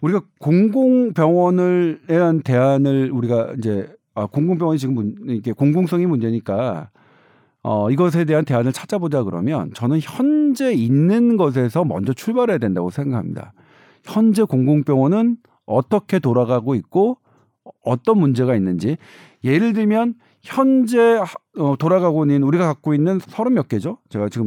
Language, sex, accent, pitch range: Korean, male, native, 130-190 Hz